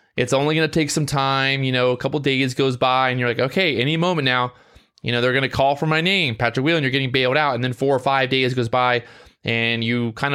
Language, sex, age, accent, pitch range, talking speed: English, male, 20-39, American, 120-145 Hz, 265 wpm